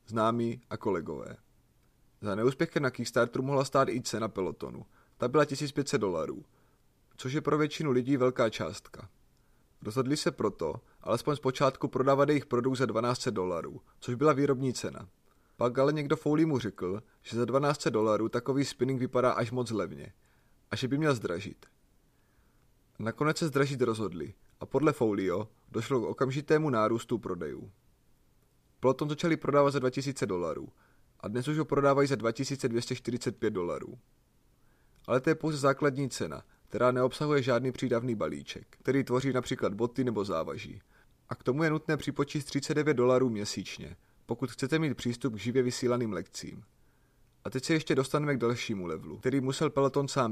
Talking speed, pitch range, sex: 155 wpm, 120-145 Hz, male